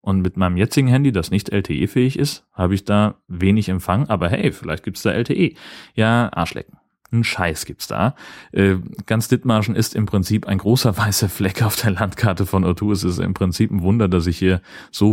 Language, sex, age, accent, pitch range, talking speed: German, male, 30-49, German, 95-110 Hz, 210 wpm